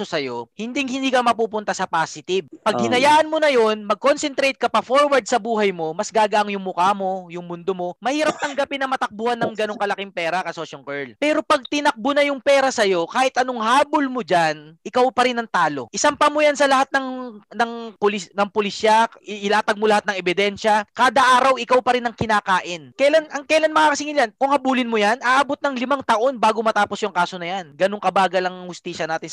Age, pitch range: 20-39, 190-265 Hz